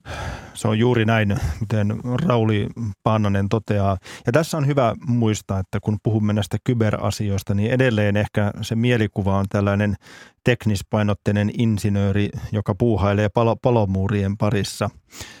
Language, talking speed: Finnish, 115 wpm